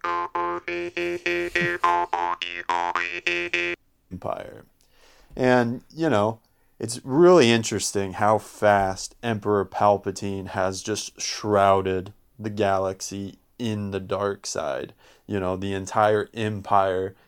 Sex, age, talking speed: male, 30-49, 85 wpm